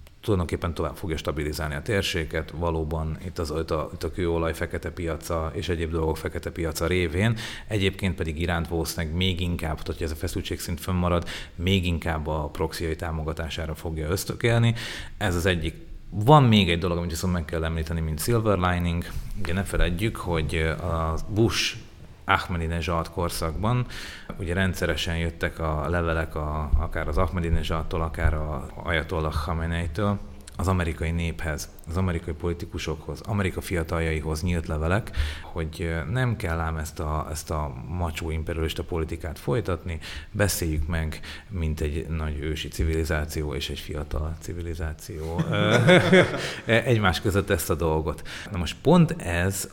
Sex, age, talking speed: male, 30-49, 140 wpm